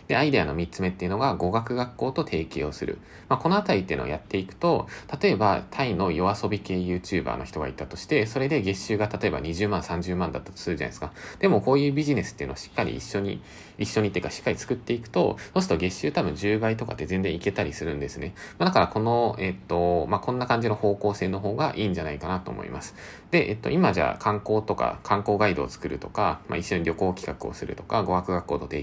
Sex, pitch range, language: male, 85-115 Hz, Japanese